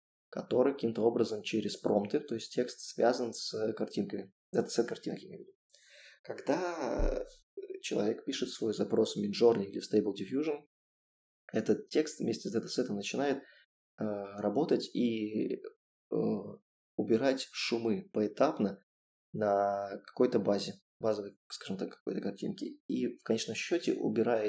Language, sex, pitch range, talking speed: Russian, male, 100-130 Hz, 120 wpm